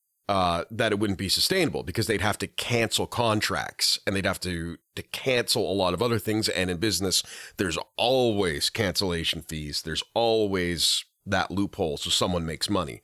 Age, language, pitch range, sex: 40-59, English, 90-125 Hz, male